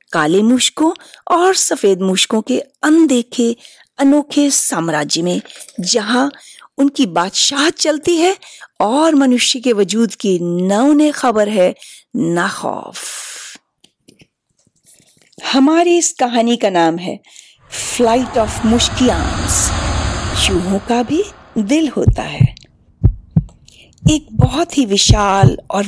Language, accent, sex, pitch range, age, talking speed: Hindi, native, female, 185-275 Hz, 40-59, 105 wpm